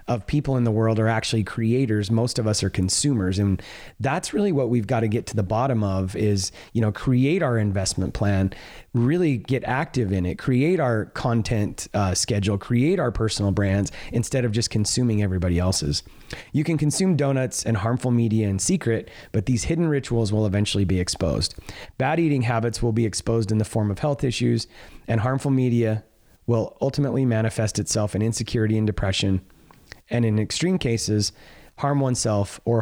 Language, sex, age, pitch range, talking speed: English, male, 30-49, 100-130 Hz, 180 wpm